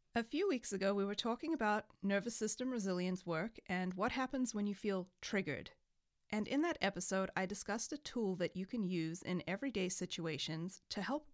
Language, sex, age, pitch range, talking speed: English, female, 30-49, 175-225 Hz, 190 wpm